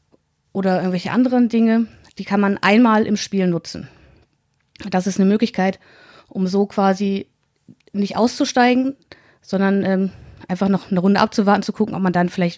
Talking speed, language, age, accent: 155 wpm, German, 30-49, German